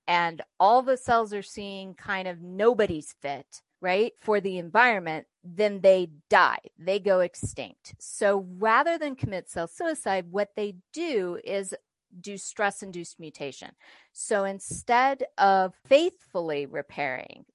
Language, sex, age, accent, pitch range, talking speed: English, female, 40-59, American, 175-230 Hz, 130 wpm